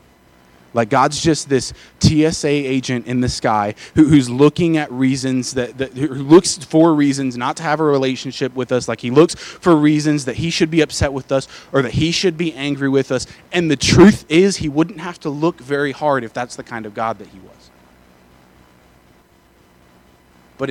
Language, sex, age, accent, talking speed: English, male, 20-39, American, 195 wpm